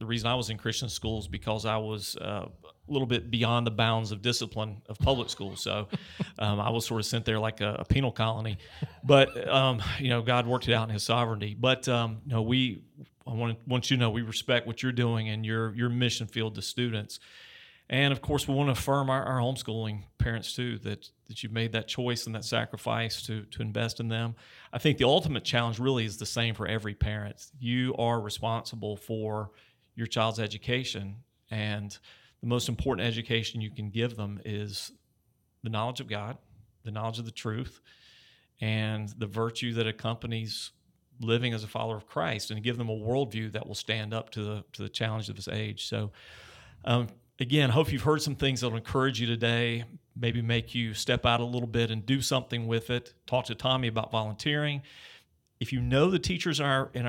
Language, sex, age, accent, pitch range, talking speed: English, male, 40-59, American, 110-125 Hz, 210 wpm